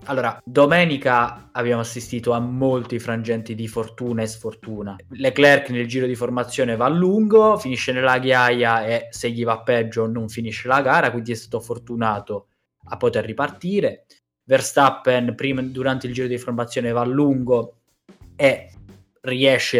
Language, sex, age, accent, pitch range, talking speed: Italian, male, 20-39, native, 115-140 Hz, 150 wpm